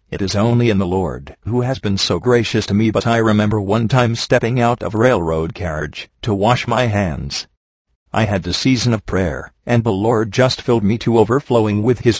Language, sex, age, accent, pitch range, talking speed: English, male, 50-69, American, 100-120 Hz, 215 wpm